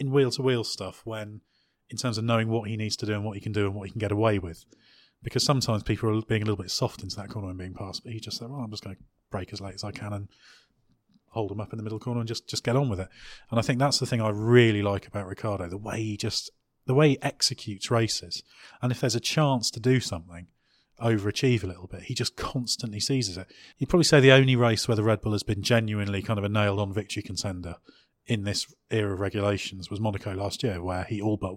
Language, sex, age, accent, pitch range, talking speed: English, male, 30-49, British, 100-115 Hz, 270 wpm